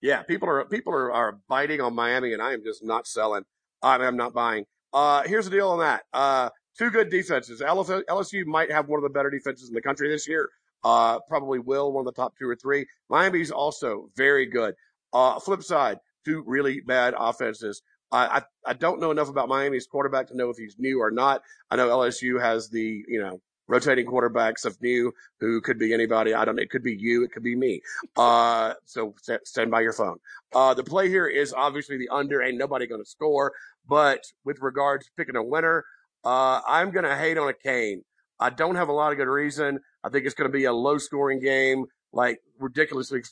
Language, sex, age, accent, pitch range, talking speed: English, male, 40-59, American, 120-145 Hz, 225 wpm